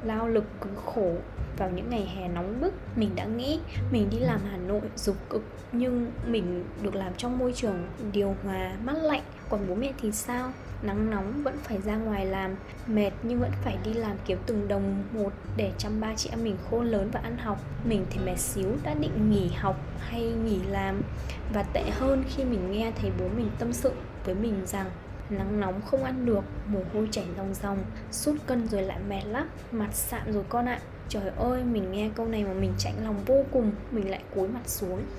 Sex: female